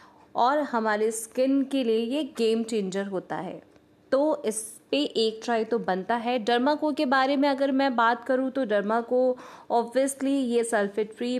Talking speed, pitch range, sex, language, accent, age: 180 wpm, 215-255 Hz, female, Hindi, native, 20-39